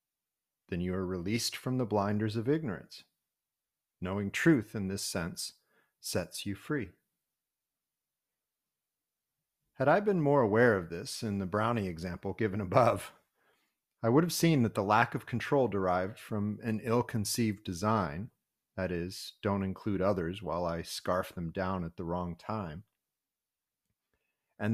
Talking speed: 145 wpm